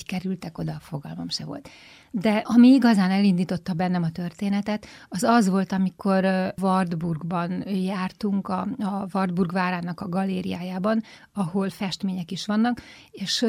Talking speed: 130 wpm